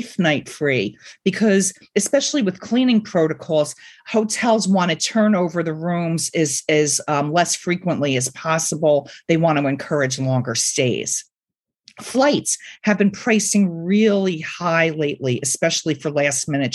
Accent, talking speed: American, 130 wpm